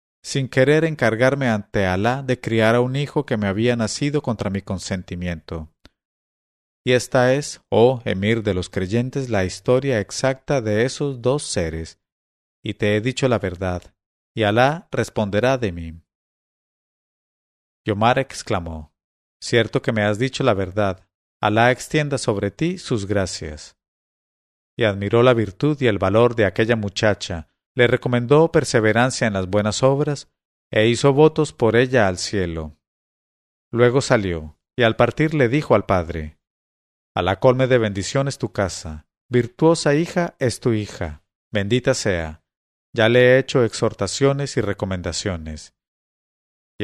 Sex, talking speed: male, 145 wpm